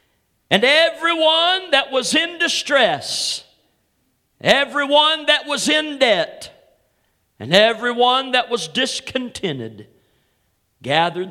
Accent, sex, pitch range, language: American, male, 150-205 Hz, English